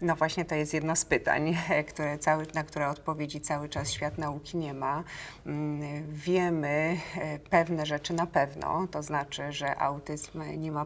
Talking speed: 150 wpm